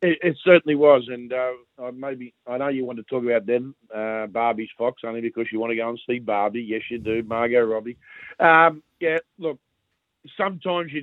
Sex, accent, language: male, Australian, English